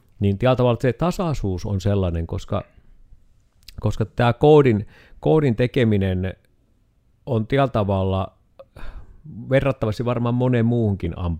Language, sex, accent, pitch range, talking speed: Finnish, male, native, 95-120 Hz, 105 wpm